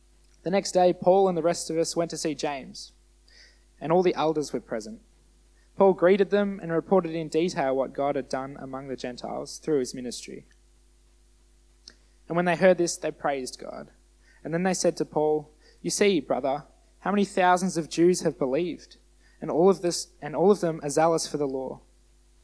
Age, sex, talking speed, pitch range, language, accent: 20-39, male, 195 wpm, 140-175 Hz, English, Australian